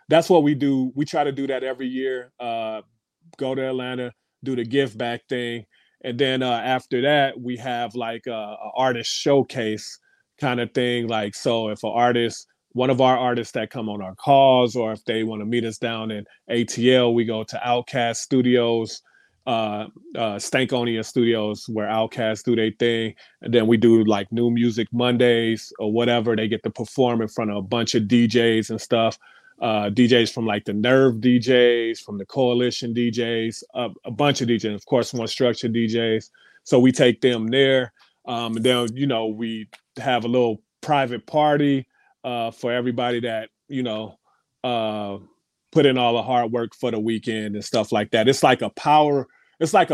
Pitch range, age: 110-130 Hz, 30-49